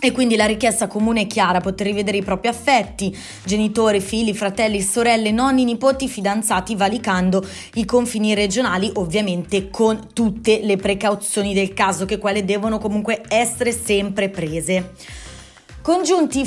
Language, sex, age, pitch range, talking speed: Italian, female, 20-39, 195-250 Hz, 140 wpm